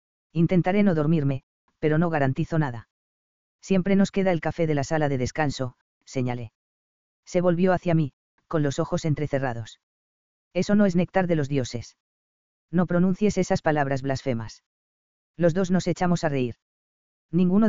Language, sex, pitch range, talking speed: English, female, 120-170 Hz, 155 wpm